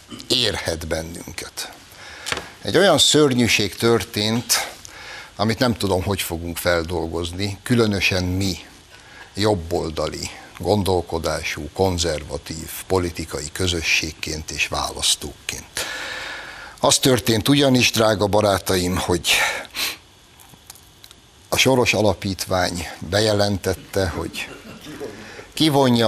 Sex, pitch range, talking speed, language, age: male, 90-110 Hz, 75 wpm, Hungarian, 60-79